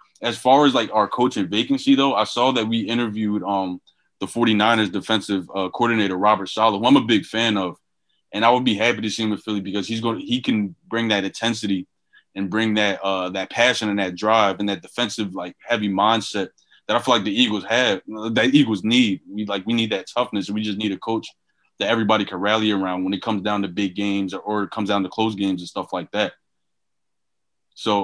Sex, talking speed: male, 225 wpm